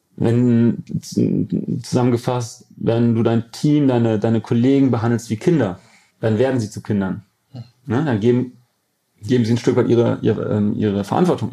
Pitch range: 115-130 Hz